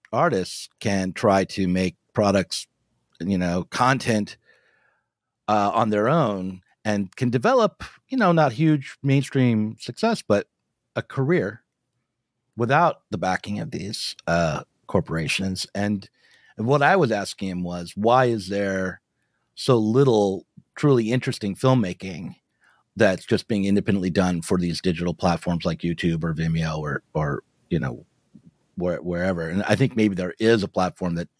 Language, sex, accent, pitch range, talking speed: English, male, American, 95-125 Hz, 140 wpm